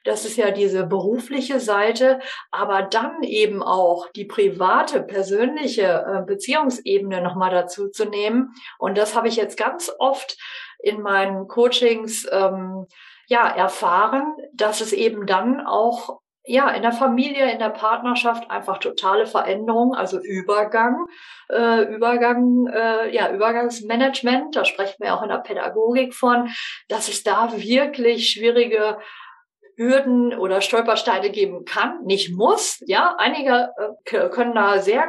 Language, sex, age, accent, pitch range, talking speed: German, female, 50-69, German, 195-255 Hz, 130 wpm